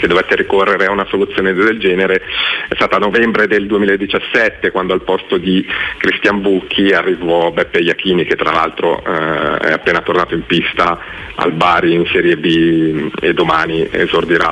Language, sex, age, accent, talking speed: Italian, male, 40-59, native, 160 wpm